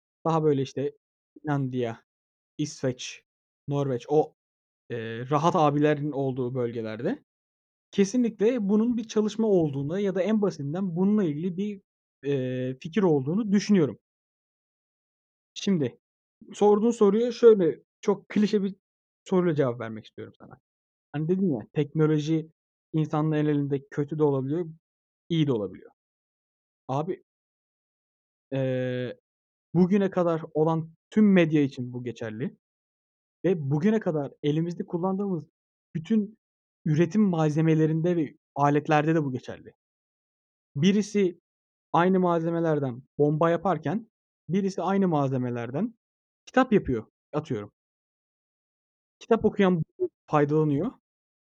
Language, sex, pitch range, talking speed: Turkish, male, 140-200 Hz, 105 wpm